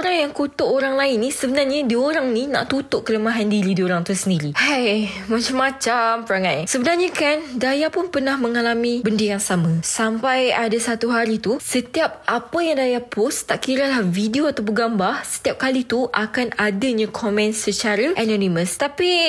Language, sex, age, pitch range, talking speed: Malay, female, 20-39, 210-280 Hz, 170 wpm